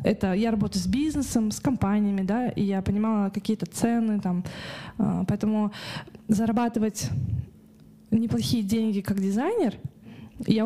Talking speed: 120 wpm